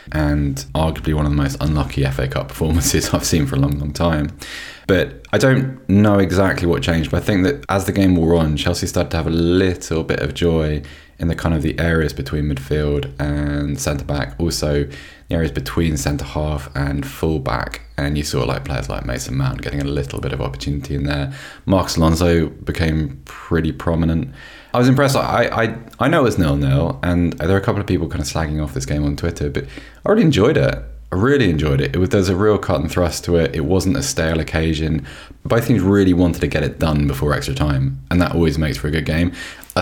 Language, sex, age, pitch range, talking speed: English, male, 20-39, 75-90 Hz, 225 wpm